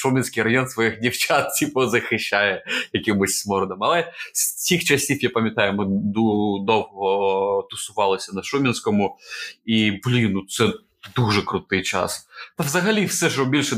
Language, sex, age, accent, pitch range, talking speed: Ukrainian, male, 20-39, native, 105-130 Hz, 140 wpm